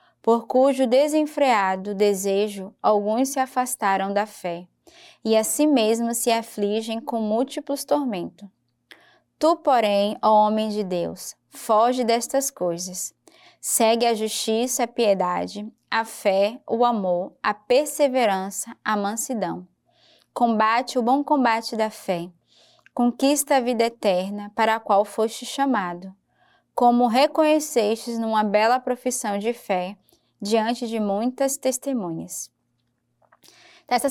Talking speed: 120 wpm